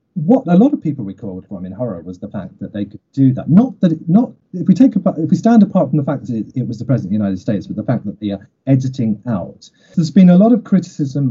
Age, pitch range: 30-49, 115-155 Hz